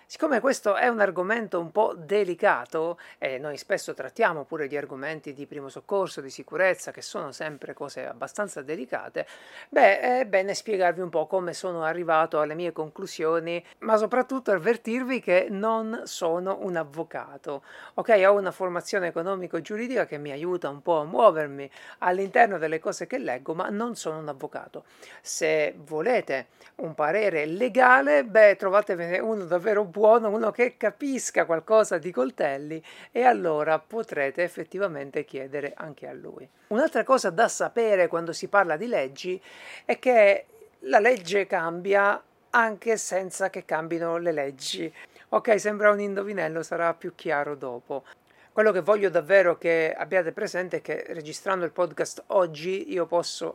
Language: Italian